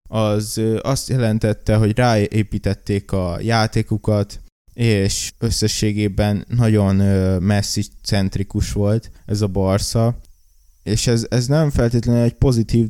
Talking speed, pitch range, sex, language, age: 100 wpm, 100-120 Hz, male, Hungarian, 20-39